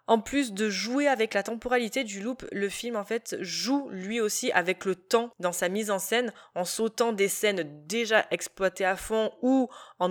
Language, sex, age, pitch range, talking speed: French, female, 20-39, 185-235 Hz, 200 wpm